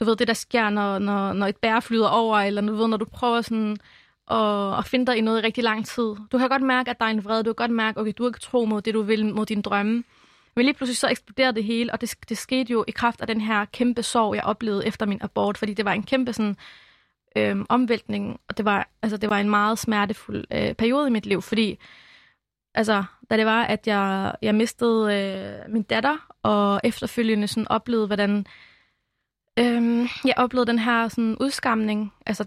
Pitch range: 215-245 Hz